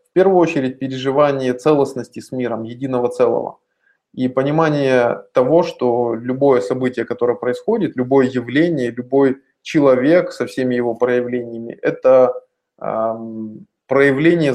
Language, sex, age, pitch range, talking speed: Russian, male, 20-39, 120-160 Hz, 110 wpm